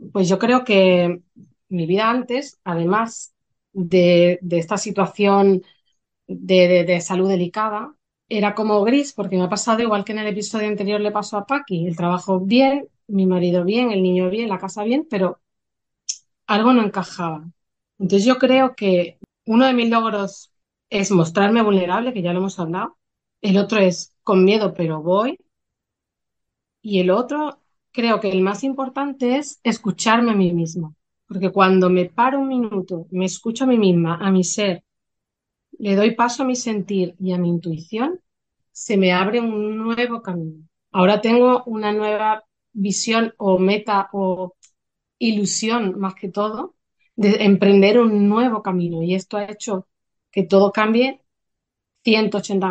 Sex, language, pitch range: female, Spanish, 185-225 Hz